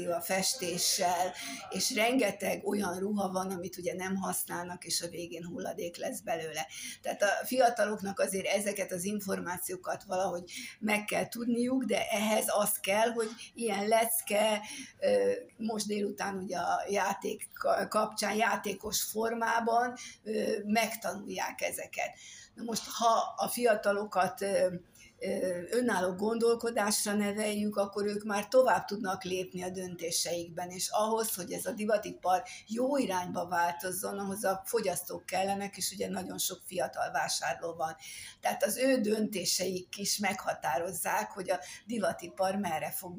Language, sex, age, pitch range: Hungarian, female, 60-79, 185-220 Hz